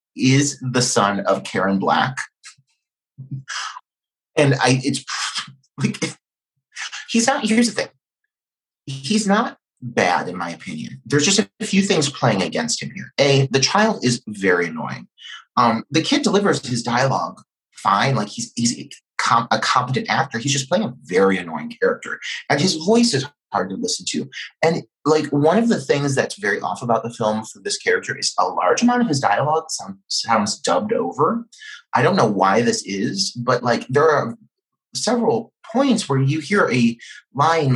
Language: English